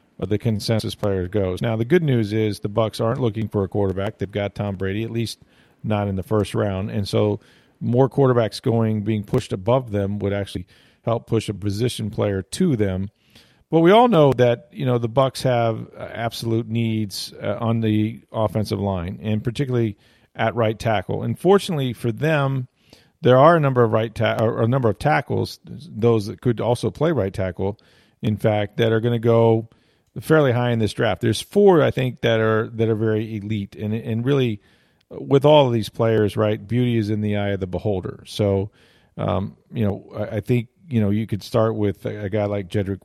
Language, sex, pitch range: English, male, 105-120 Hz